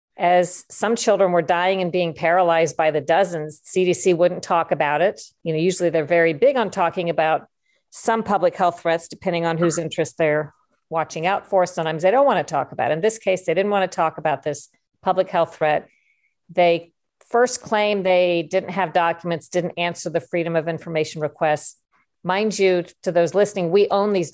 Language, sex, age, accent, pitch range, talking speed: English, female, 50-69, American, 165-190 Hz, 190 wpm